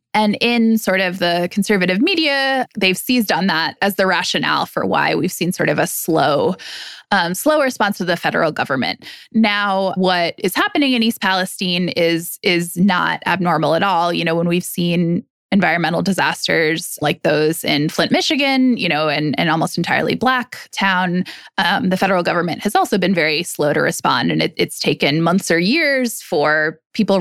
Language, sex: English, female